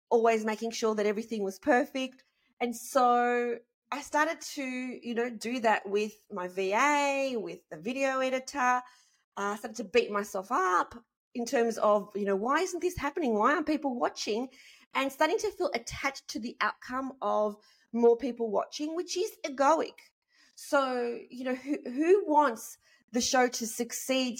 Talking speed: 165 wpm